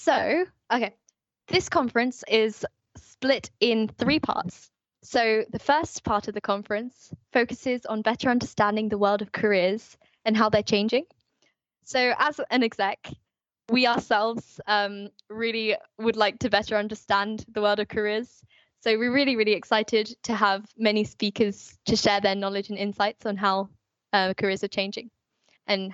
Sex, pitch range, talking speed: female, 205-235 Hz, 155 wpm